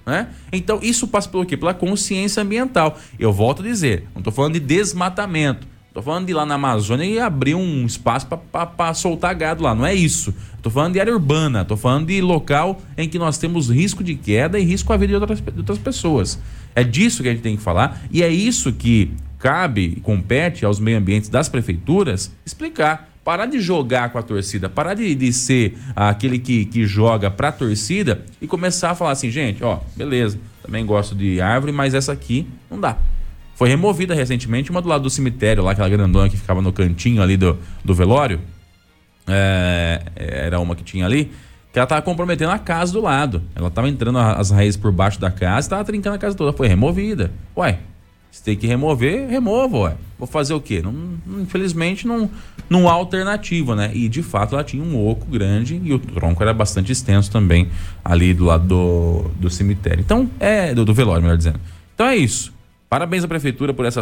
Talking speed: 205 wpm